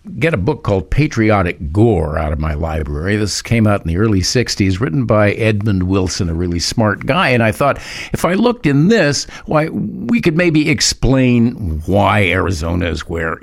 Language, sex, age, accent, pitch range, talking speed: English, male, 60-79, American, 80-125 Hz, 190 wpm